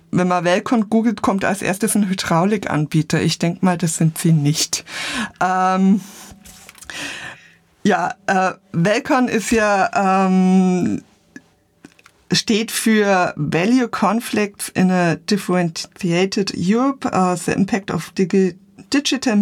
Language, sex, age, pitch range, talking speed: German, female, 50-69, 180-230 Hz, 110 wpm